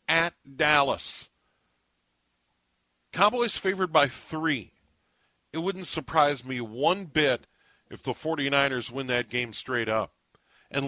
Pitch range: 115-170 Hz